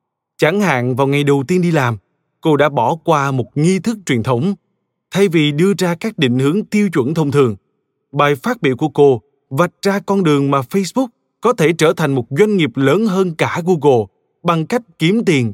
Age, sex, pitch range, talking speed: 20-39, male, 130-180 Hz, 210 wpm